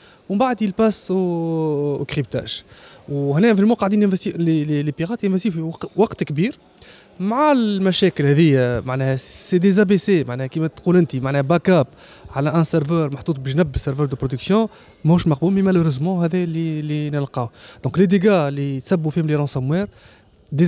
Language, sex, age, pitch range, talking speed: Arabic, male, 20-39, 140-180 Hz, 145 wpm